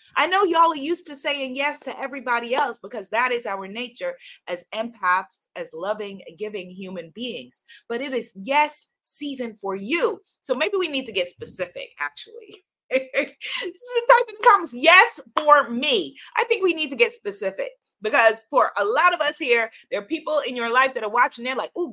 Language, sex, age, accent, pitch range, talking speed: English, female, 30-49, American, 240-375 Hz, 195 wpm